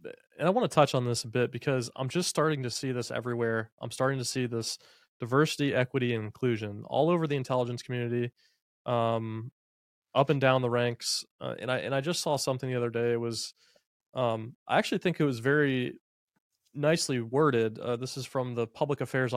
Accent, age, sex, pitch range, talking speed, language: American, 20-39, male, 120-145 Hz, 205 wpm, English